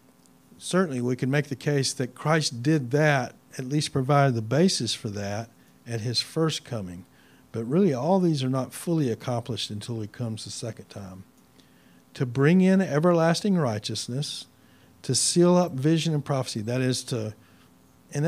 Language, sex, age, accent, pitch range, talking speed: English, male, 50-69, American, 125-155 Hz, 165 wpm